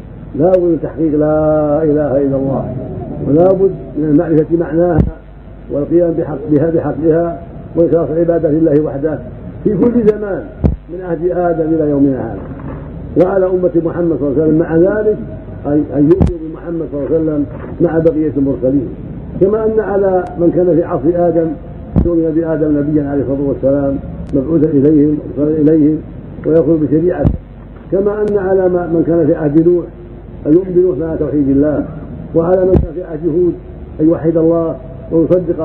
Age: 50-69